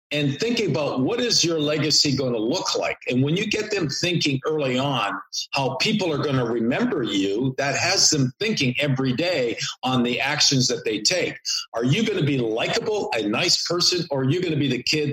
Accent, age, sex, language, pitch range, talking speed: American, 50-69, male, English, 135-165 Hz, 220 wpm